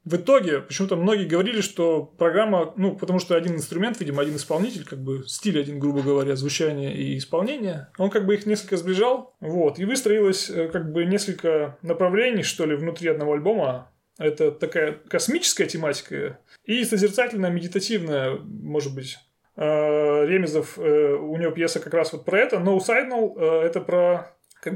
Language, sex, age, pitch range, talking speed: Russian, male, 30-49, 150-200 Hz, 160 wpm